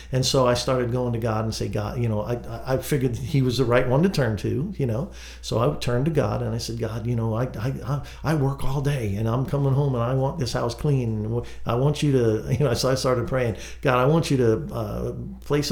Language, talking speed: English, 265 wpm